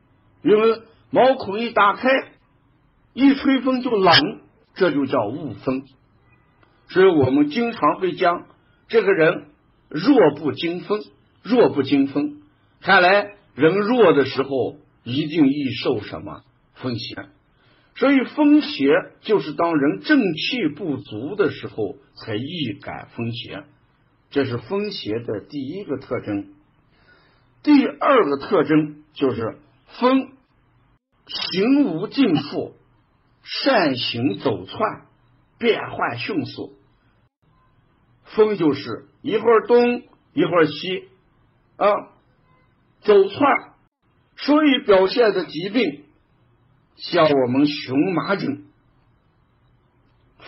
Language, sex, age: Chinese, male, 50-69